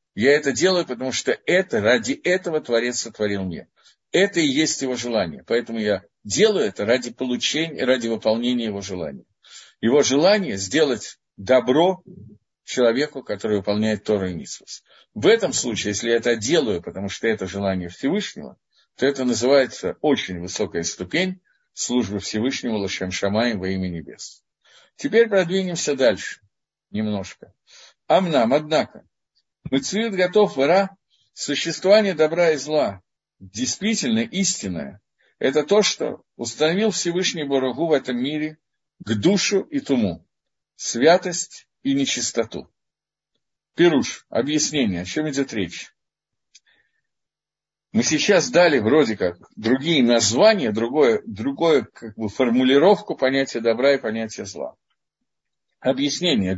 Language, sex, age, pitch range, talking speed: Russian, male, 50-69, 110-175 Hz, 125 wpm